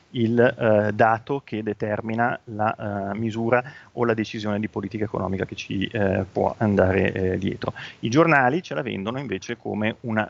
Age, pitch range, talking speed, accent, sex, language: 30-49, 105-135 Hz, 170 wpm, native, male, Italian